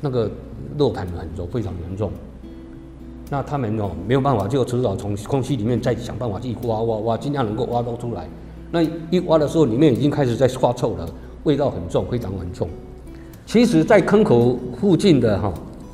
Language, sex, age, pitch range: Chinese, male, 50-69, 100-145 Hz